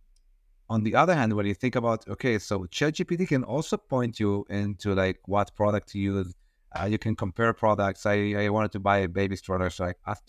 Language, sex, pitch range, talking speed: English, male, 100-125 Hz, 215 wpm